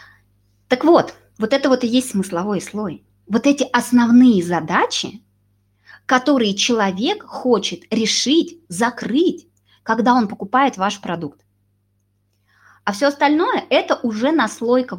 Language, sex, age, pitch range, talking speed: Russian, female, 20-39, 165-240 Hz, 120 wpm